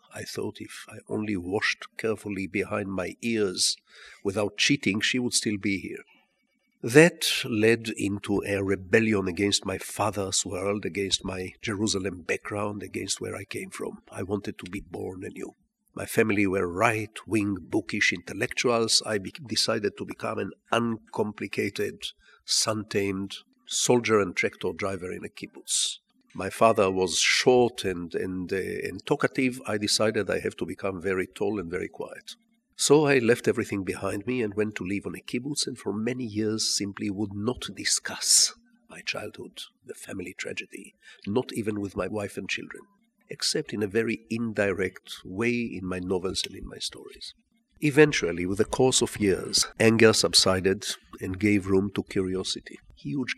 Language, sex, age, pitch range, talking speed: English, male, 50-69, 100-120 Hz, 160 wpm